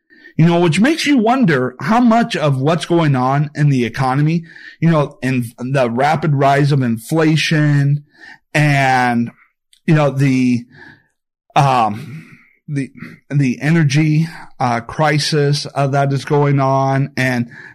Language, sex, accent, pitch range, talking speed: English, male, American, 135-170 Hz, 130 wpm